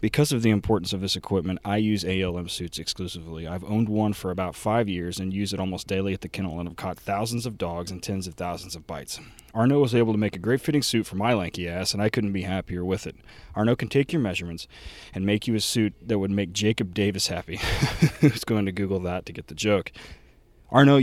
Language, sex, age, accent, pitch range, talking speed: English, male, 20-39, American, 95-120 Hz, 245 wpm